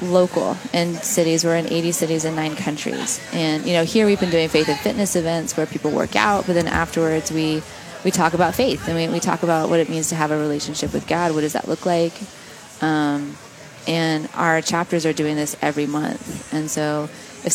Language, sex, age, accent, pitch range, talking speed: English, female, 20-39, American, 155-175 Hz, 220 wpm